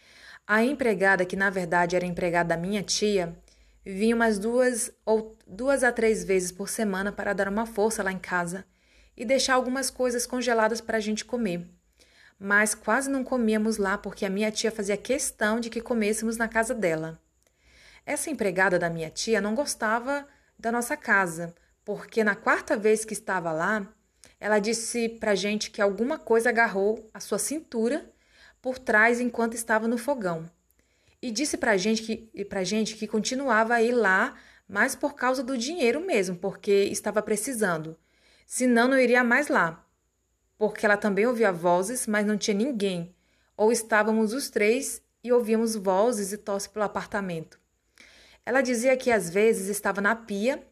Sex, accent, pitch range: female, Brazilian, 200-235 Hz